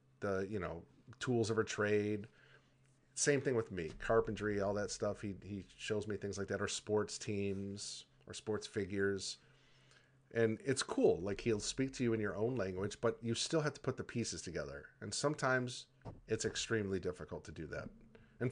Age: 40-59